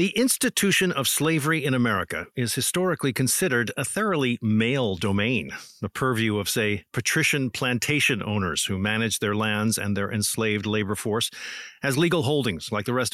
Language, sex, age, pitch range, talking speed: English, male, 50-69, 115-150 Hz, 160 wpm